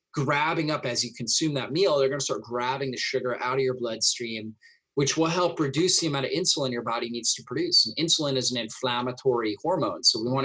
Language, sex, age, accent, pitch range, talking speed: English, male, 30-49, American, 120-160 Hz, 230 wpm